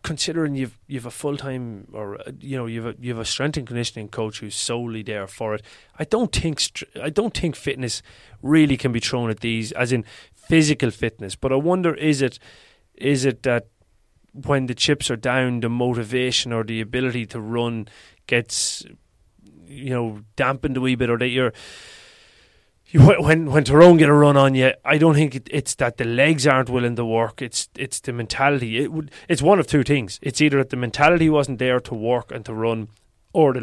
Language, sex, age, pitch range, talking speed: English, male, 30-49, 110-140 Hz, 205 wpm